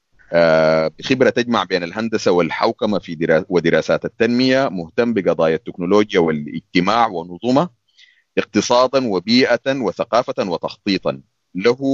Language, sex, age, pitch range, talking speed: Arabic, male, 30-49, 85-120 Hz, 95 wpm